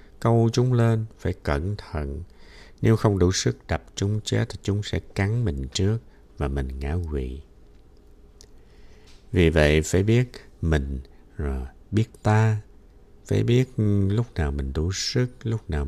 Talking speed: 150 wpm